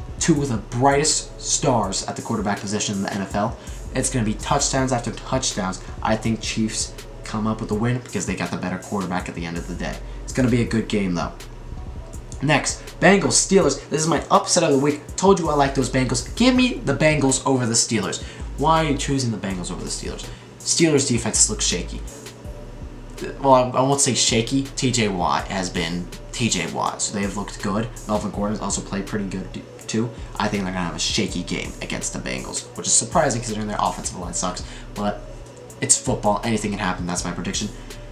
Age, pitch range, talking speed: 20-39, 100-135 Hz, 210 wpm